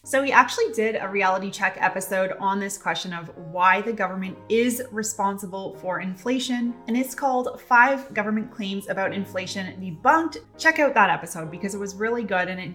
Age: 20-39